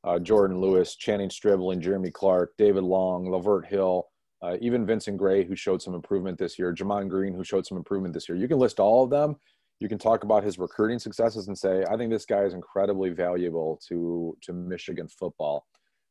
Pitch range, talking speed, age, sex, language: 90-110 Hz, 210 wpm, 30-49, male, English